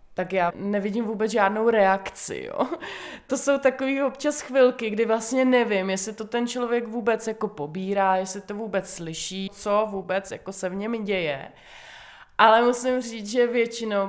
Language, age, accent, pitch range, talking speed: Czech, 20-39, native, 195-230 Hz, 150 wpm